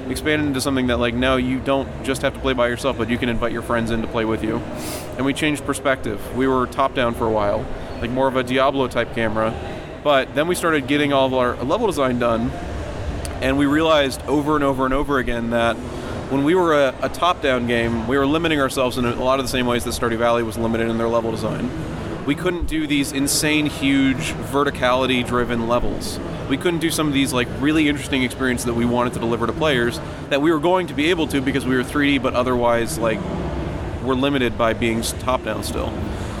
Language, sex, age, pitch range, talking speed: English, male, 30-49, 115-140 Hz, 225 wpm